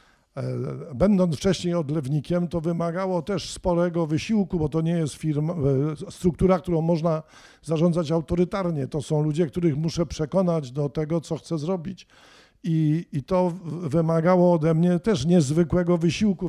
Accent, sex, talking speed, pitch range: native, male, 140 wpm, 150-180 Hz